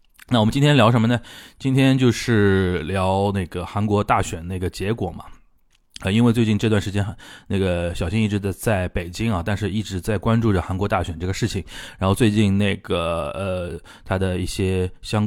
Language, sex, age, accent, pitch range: Chinese, male, 20-39, native, 90-110 Hz